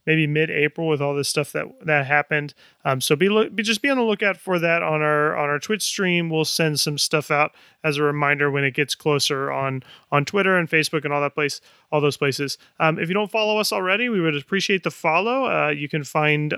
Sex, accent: male, American